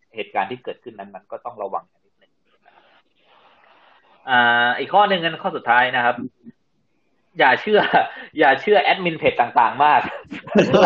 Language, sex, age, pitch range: Thai, male, 20-39, 140-210 Hz